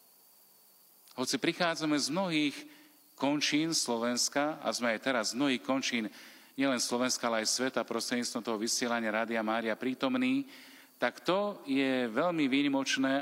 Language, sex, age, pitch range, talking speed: Slovak, male, 40-59, 135-200 Hz, 130 wpm